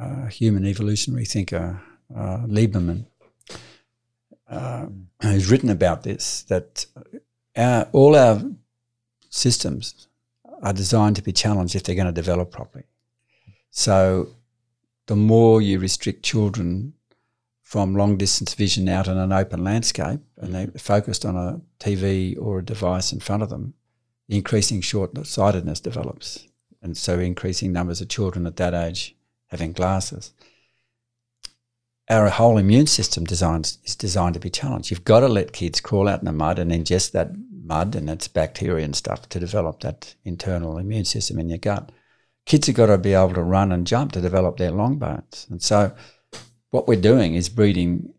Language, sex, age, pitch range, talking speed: English, male, 60-79, 90-120 Hz, 160 wpm